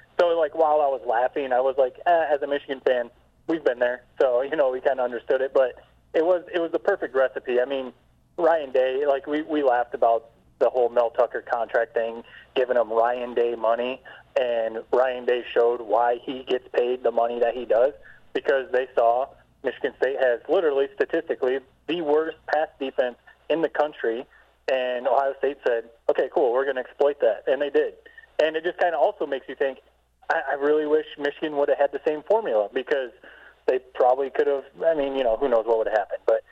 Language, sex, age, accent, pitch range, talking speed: English, male, 30-49, American, 130-180 Hz, 210 wpm